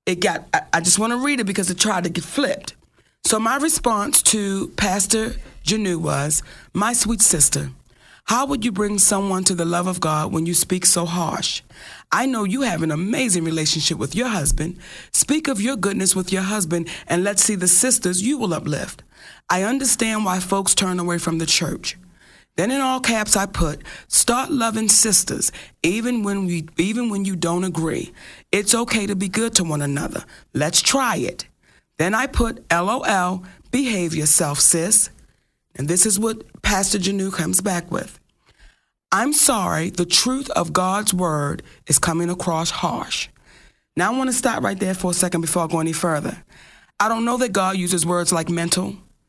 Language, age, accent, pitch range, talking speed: English, 40-59, American, 170-220 Hz, 185 wpm